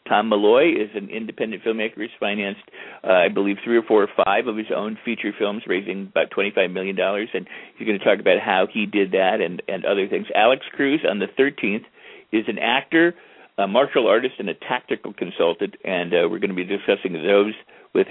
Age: 50-69